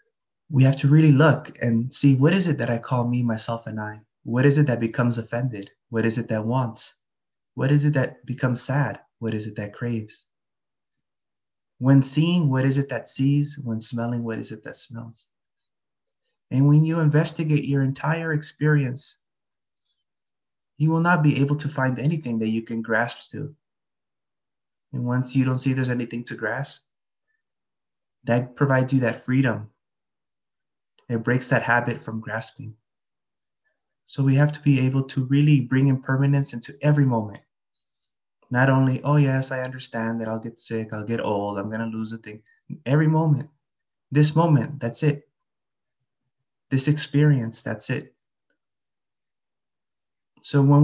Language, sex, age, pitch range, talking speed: English, male, 20-39, 115-145 Hz, 160 wpm